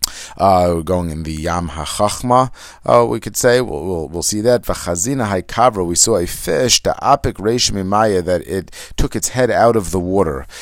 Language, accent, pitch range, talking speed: English, American, 85-110 Hz, 180 wpm